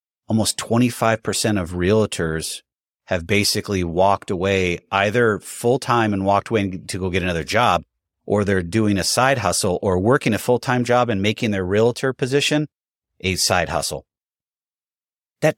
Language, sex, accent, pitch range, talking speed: English, male, American, 100-125 Hz, 145 wpm